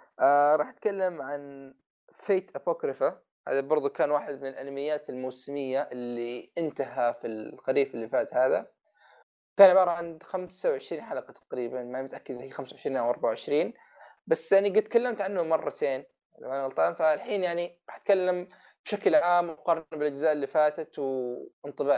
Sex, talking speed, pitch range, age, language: male, 150 wpm, 135-180 Hz, 20-39, Arabic